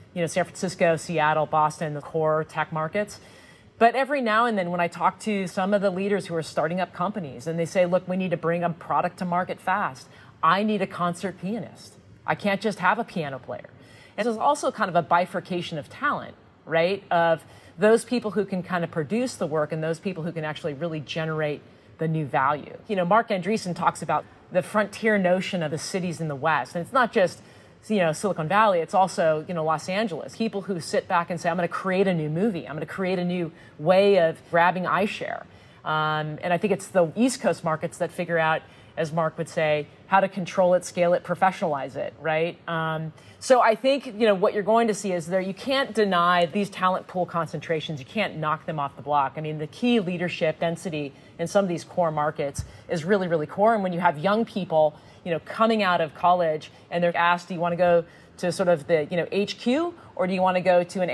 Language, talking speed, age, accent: English, 235 wpm, 30-49, American